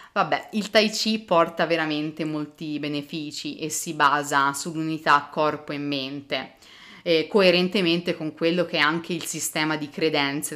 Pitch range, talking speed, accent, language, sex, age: 150-175 Hz, 150 wpm, native, Italian, female, 30-49